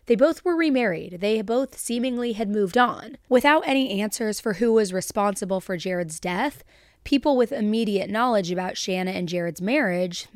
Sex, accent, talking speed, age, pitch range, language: female, American, 170 wpm, 20-39, 190-250 Hz, English